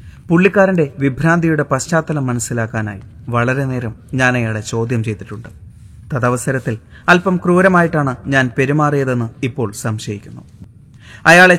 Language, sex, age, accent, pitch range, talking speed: Malayalam, male, 30-49, native, 115-150 Hz, 95 wpm